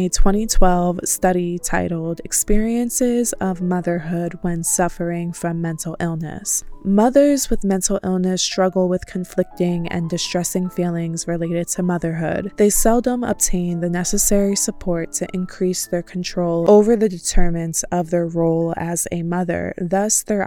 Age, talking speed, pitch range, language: 20-39, 135 wpm, 170-195 Hz, English